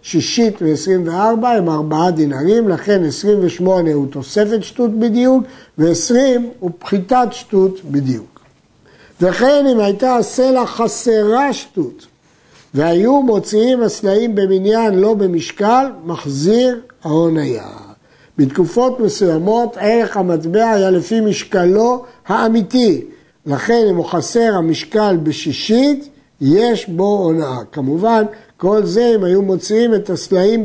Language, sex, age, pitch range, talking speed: Hebrew, male, 60-79, 165-230 Hz, 110 wpm